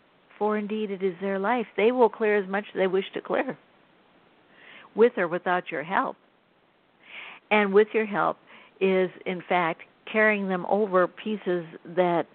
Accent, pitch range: American, 165-190 Hz